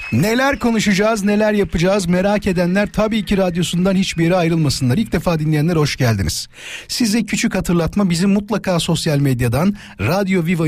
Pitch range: 125-190 Hz